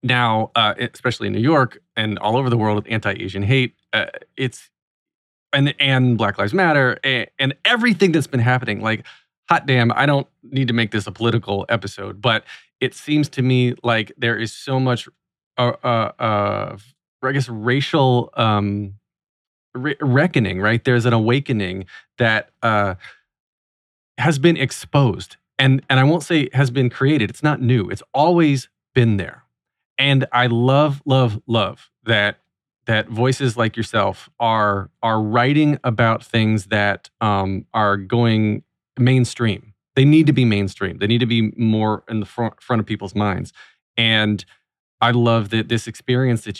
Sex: male